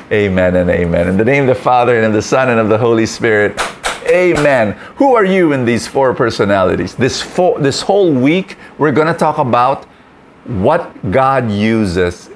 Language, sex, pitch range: English, male, 105-155 Hz